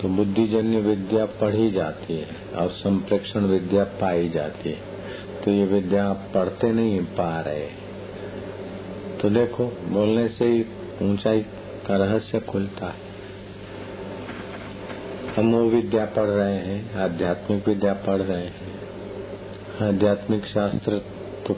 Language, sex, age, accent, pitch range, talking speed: Hindi, male, 50-69, native, 95-105 Hz, 125 wpm